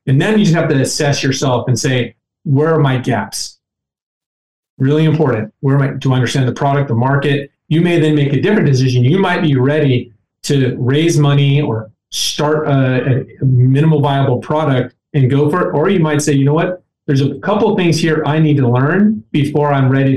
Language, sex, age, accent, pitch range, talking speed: English, male, 30-49, American, 130-155 Hz, 210 wpm